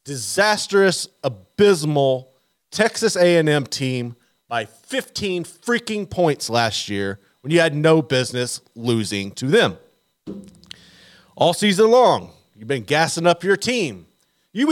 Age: 30-49